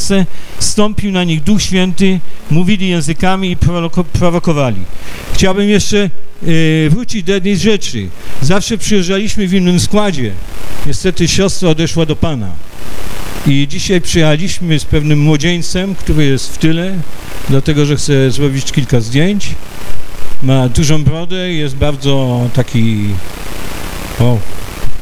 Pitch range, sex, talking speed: 130-175 Hz, male, 120 wpm